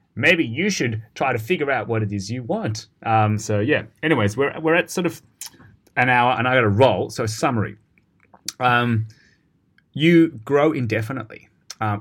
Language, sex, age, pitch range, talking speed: English, male, 20-39, 105-120 Hz, 180 wpm